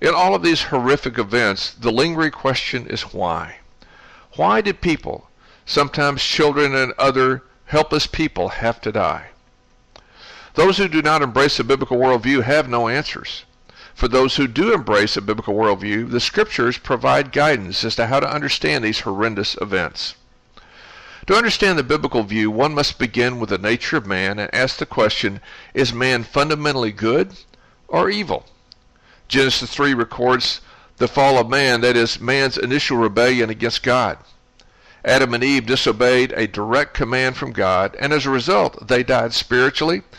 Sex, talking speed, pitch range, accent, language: male, 160 wpm, 115-140 Hz, American, English